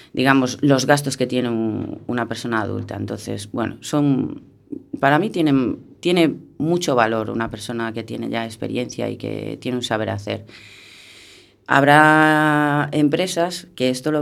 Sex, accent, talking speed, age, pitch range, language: female, Spanish, 150 wpm, 30-49, 115-140 Hz, Spanish